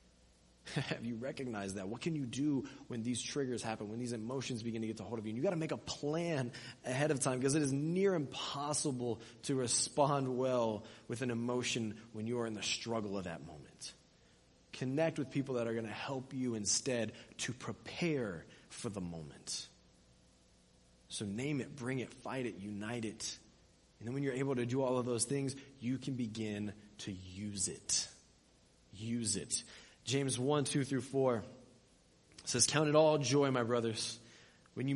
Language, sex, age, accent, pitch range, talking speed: English, male, 20-39, American, 110-140 Hz, 185 wpm